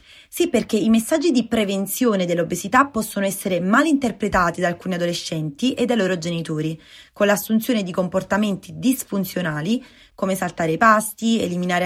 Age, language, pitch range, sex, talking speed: 20-39, Italian, 180-250 Hz, female, 140 wpm